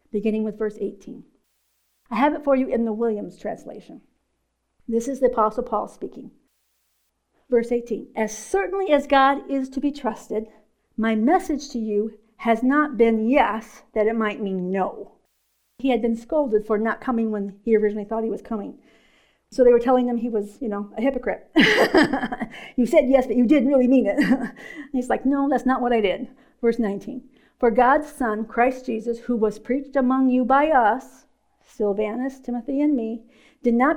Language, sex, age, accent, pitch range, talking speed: English, female, 50-69, American, 220-265 Hz, 185 wpm